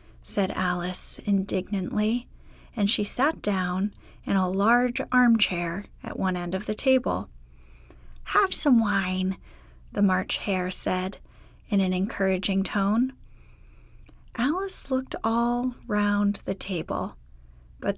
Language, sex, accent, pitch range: English, female, American, 185-250 Hz